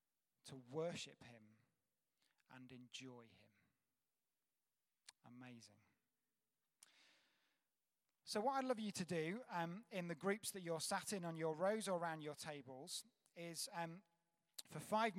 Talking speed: 130 wpm